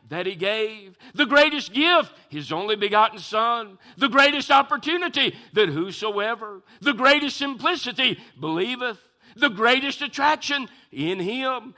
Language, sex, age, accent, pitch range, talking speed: English, male, 50-69, American, 220-275 Hz, 120 wpm